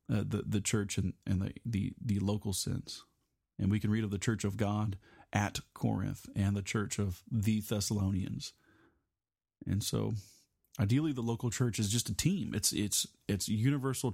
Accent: American